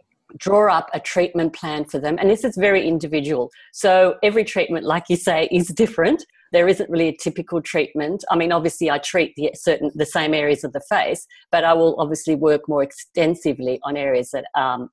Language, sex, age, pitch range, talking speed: English, female, 50-69, 145-185 Hz, 200 wpm